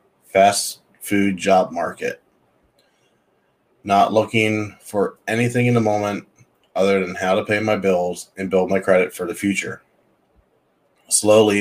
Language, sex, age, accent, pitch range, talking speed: English, male, 20-39, American, 95-105 Hz, 135 wpm